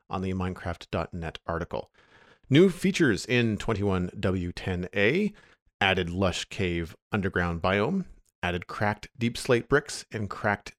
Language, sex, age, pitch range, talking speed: English, male, 40-59, 95-125 Hz, 110 wpm